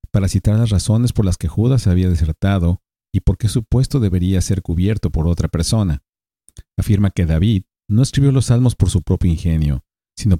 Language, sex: Spanish, male